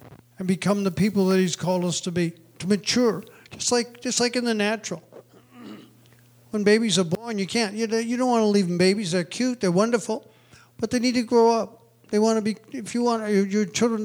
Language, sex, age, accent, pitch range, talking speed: English, male, 50-69, American, 180-215 Hz, 220 wpm